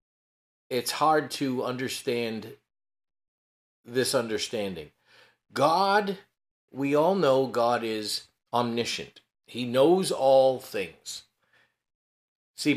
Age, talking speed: 40-59, 85 wpm